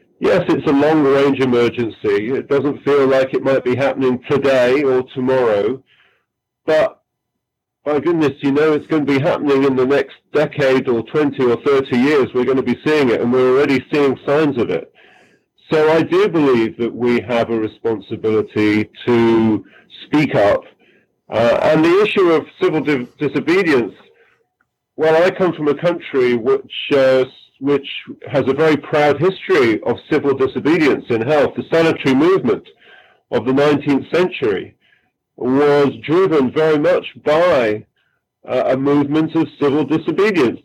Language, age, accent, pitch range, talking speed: English, 40-59, British, 130-155 Hz, 155 wpm